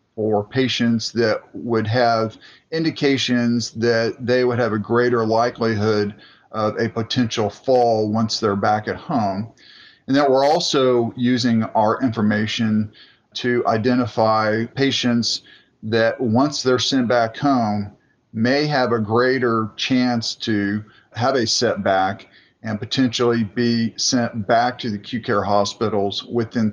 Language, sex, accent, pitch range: English, male, American, 105-125 Hz